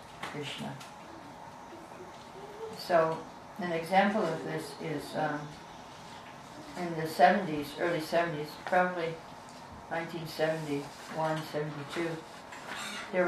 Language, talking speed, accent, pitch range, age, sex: English, 75 wpm, American, 165-195 Hz, 60-79, female